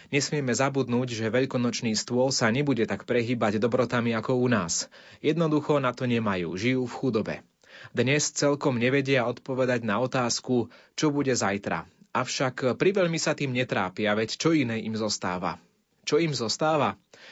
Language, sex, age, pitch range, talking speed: Slovak, male, 30-49, 110-140 Hz, 145 wpm